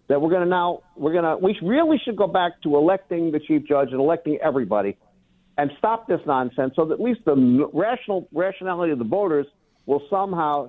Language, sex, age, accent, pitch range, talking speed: English, male, 60-79, American, 145-200 Hz, 210 wpm